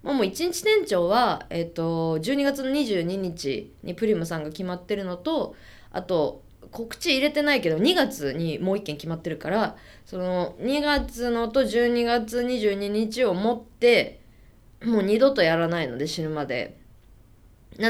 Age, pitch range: 20-39, 160-250 Hz